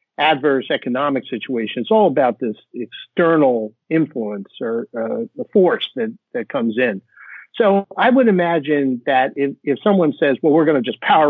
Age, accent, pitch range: 50-69, American, 130-165 Hz